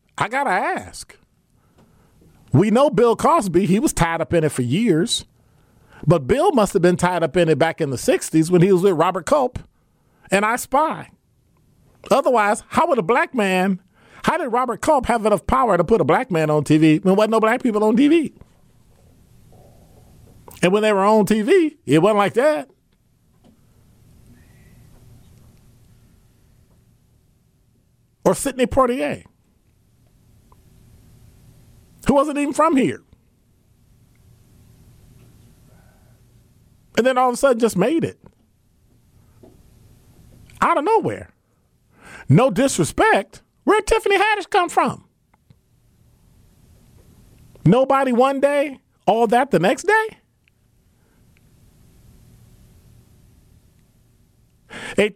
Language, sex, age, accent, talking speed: English, male, 40-59, American, 125 wpm